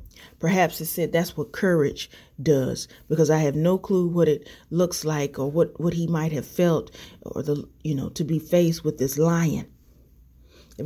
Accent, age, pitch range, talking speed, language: American, 30-49, 140-170 Hz, 190 wpm, English